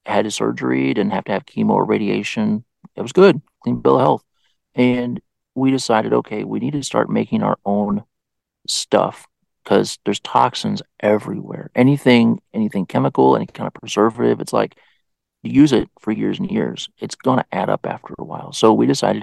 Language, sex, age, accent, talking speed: English, male, 40-59, American, 185 wpm